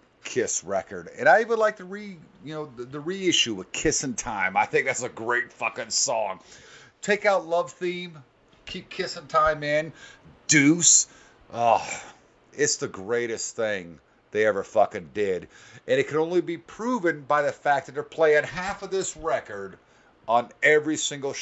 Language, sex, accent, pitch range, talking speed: English, male, American, 120-190 Hz, 170 wpm